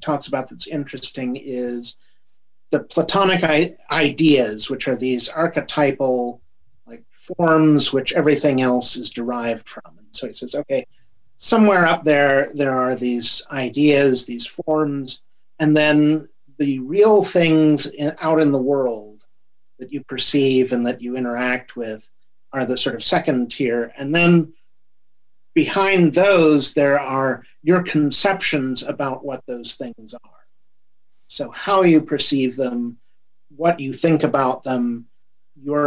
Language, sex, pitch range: English, male, 130-160 Hz